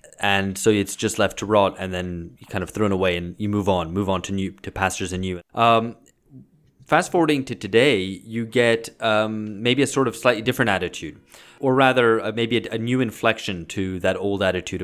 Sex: male